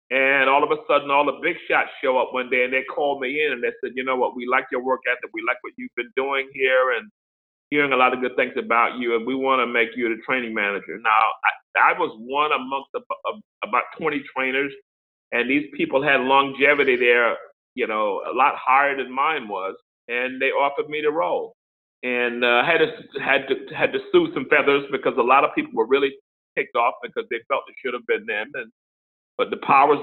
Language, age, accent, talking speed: English, 40-59, American, 230 wpm